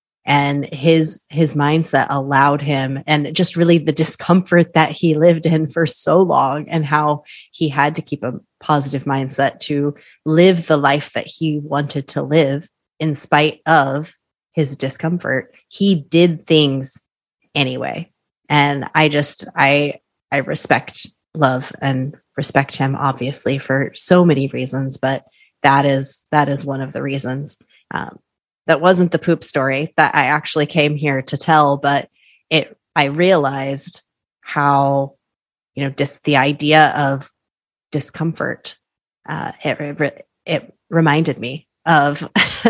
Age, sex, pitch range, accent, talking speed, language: 30-49, female, 140-160 Hz, American, 145 wpm, English